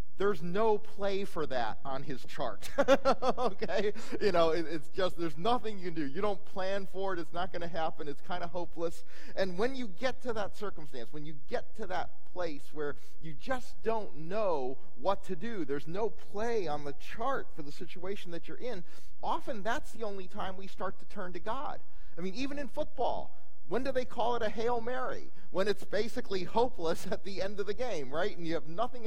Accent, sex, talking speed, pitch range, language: American, male, 215 wpm, 150-210 Hz, English